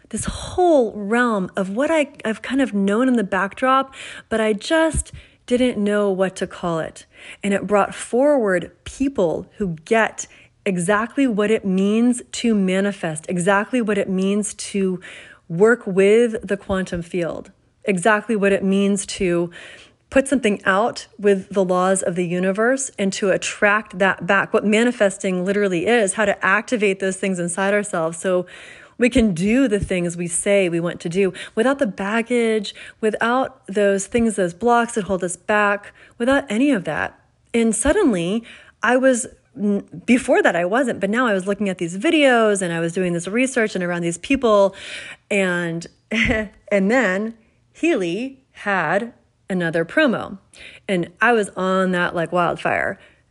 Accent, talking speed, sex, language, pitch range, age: American, 160 wpm, female, English, 190-235 Hz, 30-49